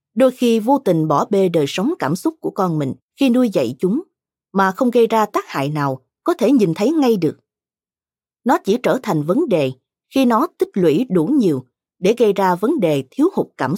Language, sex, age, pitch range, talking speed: Vietnamese, female, 20-39, 155-255 Hz, 220 wpm